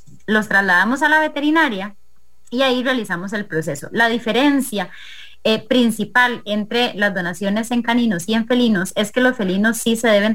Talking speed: 170 wpm